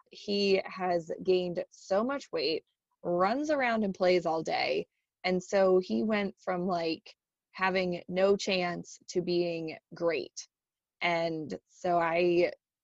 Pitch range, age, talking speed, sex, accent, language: 175-210 Hz, 20-39, 125 wpm, female, American, English